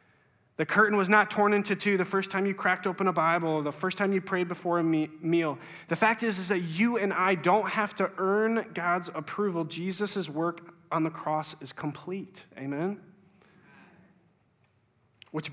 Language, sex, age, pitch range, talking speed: English, male, 20-39, 140-185 Hz, 180 wpm